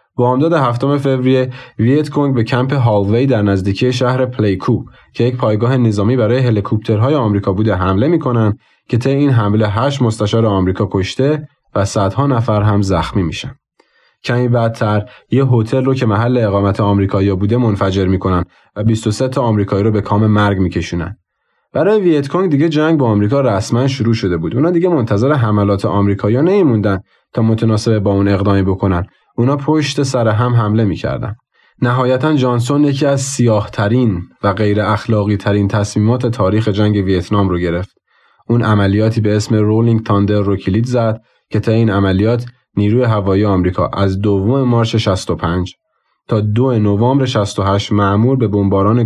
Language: Persian